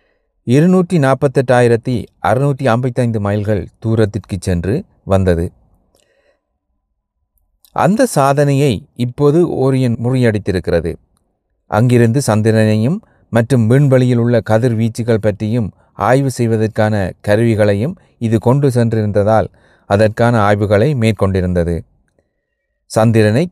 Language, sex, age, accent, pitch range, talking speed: Tamil, male, 30-49, native, 100-130 Hz, 75 wpm